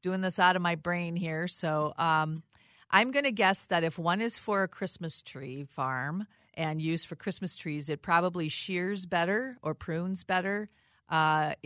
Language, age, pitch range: English, 40-59, 155-185 Hz